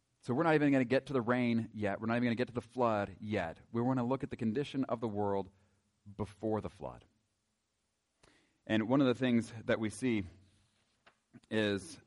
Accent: American